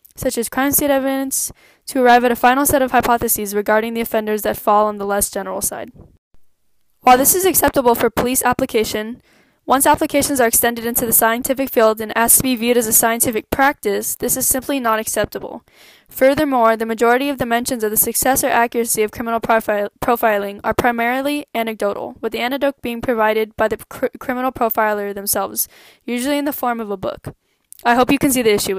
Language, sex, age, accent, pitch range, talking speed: English, female, 10-29, American, 220-255 Hz, 195 wpm